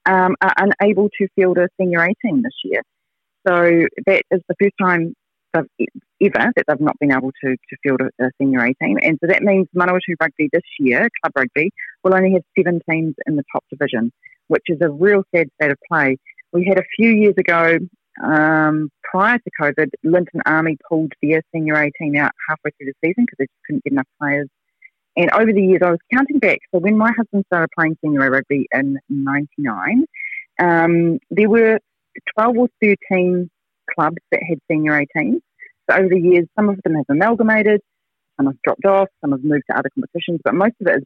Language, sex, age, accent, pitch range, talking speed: English, female, 30-49, Australian, 150-195 Hz, 205 wpm